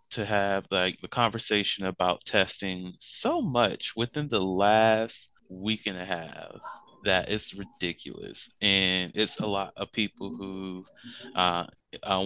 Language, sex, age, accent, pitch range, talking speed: English, male, 20-39, American, 95-120 Hz, 135 wpm